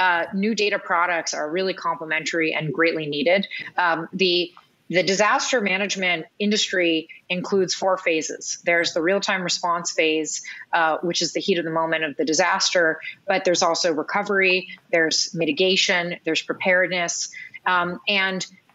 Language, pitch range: English, 170-205 Hz